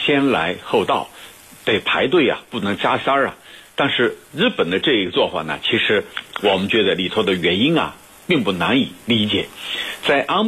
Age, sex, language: 60-79, male, Chinese